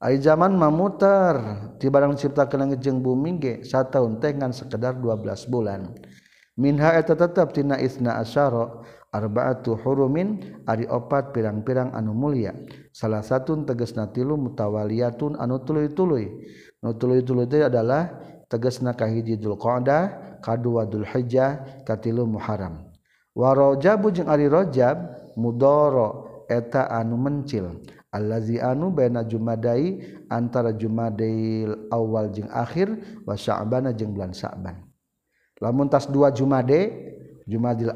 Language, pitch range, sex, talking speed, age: Indonesian, 115-145 Hz, male, 115 wpm, 50-69